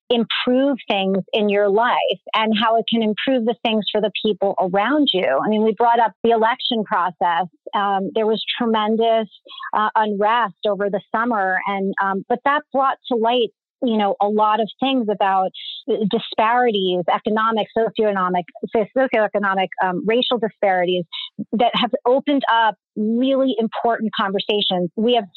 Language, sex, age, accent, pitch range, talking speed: English, female, 30-49, American, 195-240 Hz, 150 wpm